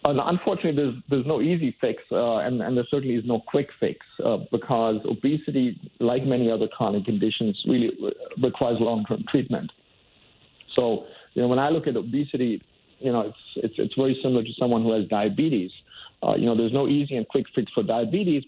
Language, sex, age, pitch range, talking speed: English, male, 50-69, 110-135 Hz, 195 wpm